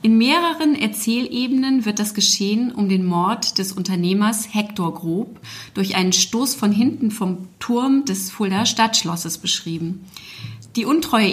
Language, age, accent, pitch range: German, 30-49, German, 185-235 Hz